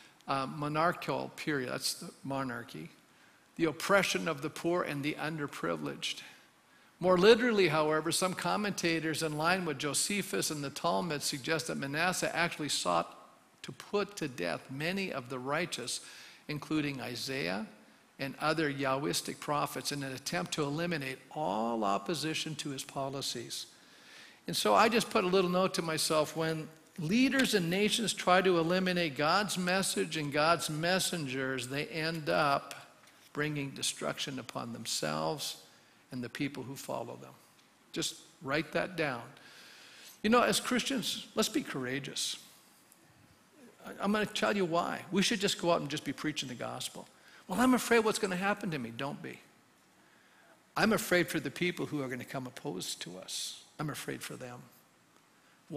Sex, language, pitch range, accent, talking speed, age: male, English, 140-185 Hz, American, 155 wpm, 50-69